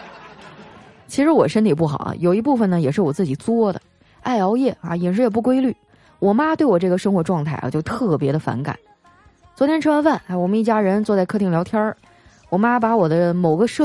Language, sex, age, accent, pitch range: Chinese, female, 20-39, native, 185-295 Hz